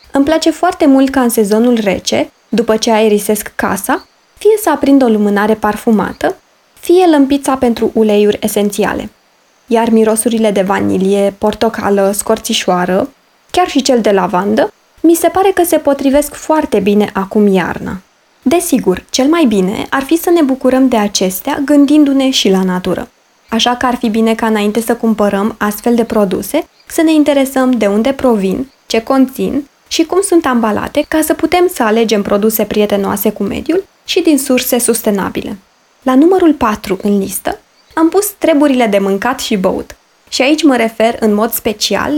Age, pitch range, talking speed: 20-39, 210-280 Hz, 165 wpm